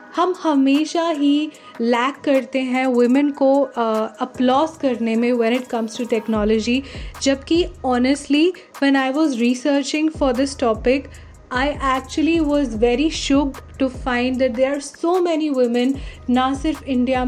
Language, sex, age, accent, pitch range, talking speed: Hindi, female, 10-29, native, 245-285 Hz, 140 wpm